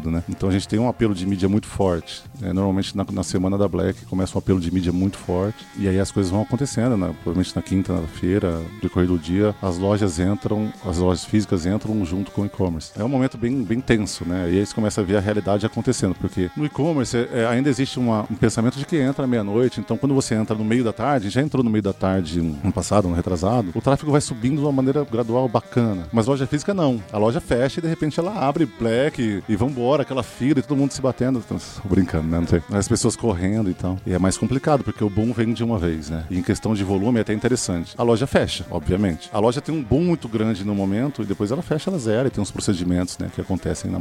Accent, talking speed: Brazilian, 255 wpm